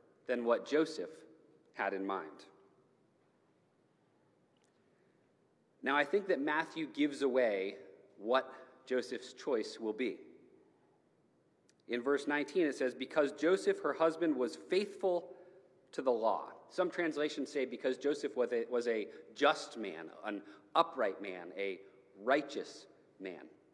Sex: male